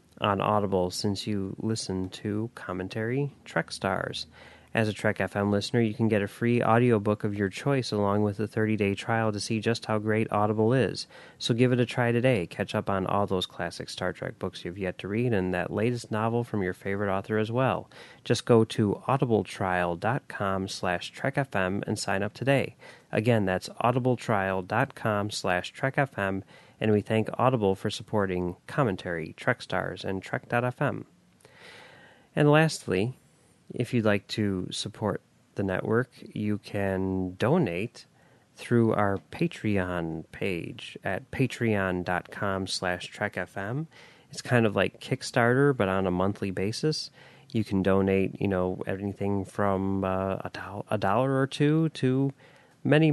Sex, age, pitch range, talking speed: male, 30-49, 95-120 Hz, 150 wpm